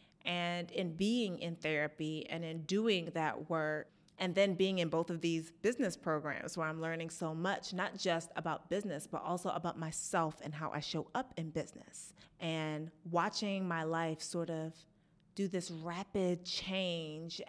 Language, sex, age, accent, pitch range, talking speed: English, female, 30-49, American, 165-195 Hz, 170 wpm